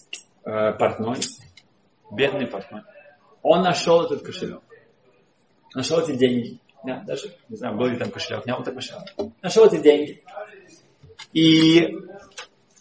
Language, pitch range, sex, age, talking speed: Russian, 145-205 Hz, male, 30-49, 120 wpm